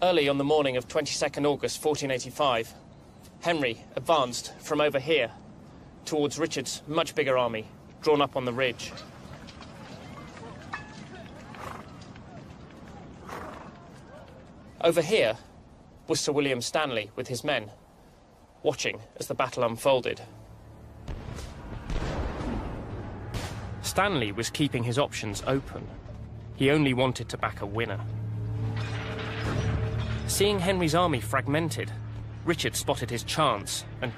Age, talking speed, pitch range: 30-49, 105 wpm, 110-145 Hz